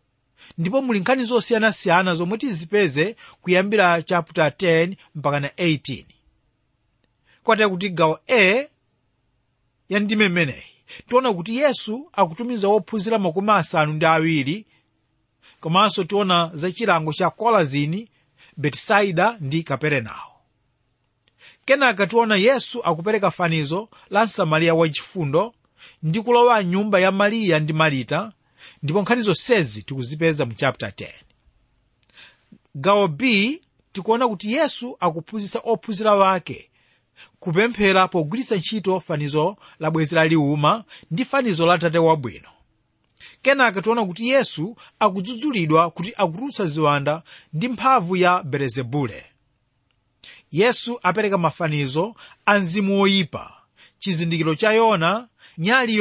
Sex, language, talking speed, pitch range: male, English, 105 wpm, 150-215 Hz